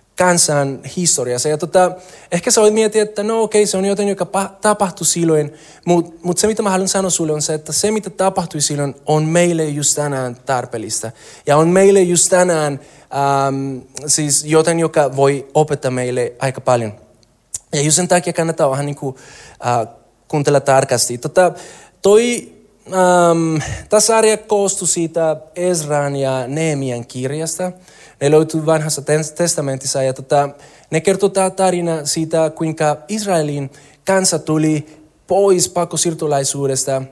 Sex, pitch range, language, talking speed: male, 140-185 Hz, Finnish, 140 wpm